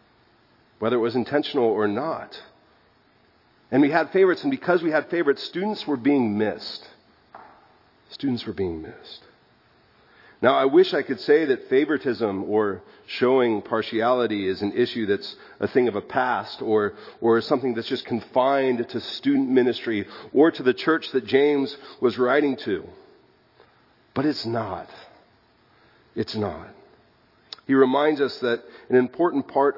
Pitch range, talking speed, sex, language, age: 115-170 Hz, 145 wpm, male, English, 40-59